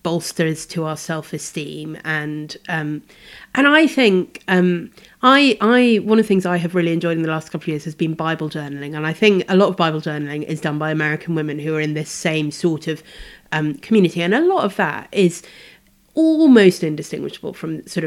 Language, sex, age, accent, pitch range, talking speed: English, female, 30-49, British, 155-195 Hz, 205 wpm